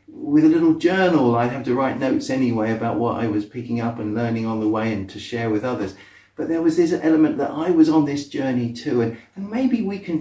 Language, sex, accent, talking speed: English, male, British, 255 wpm